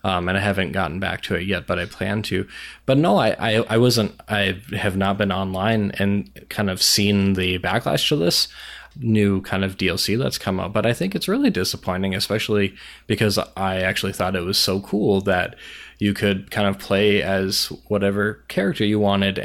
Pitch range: 95-105 Hz